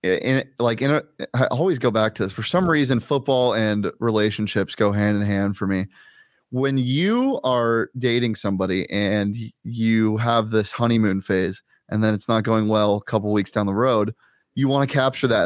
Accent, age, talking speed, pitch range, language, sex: American, 20-39, 200 wpm, 110-140 Hz, English, male